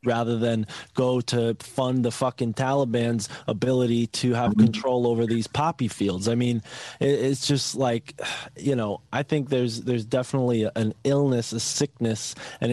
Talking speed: 160 wpm